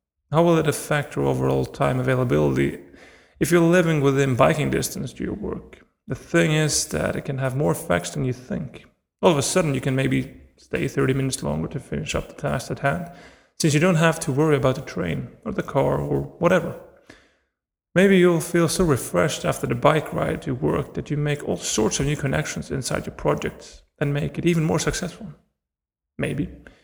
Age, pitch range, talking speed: 30-49, 130-165 Hz, 200 wpm